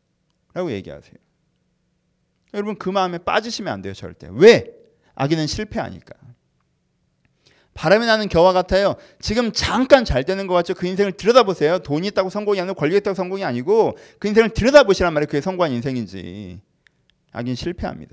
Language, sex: Korean, male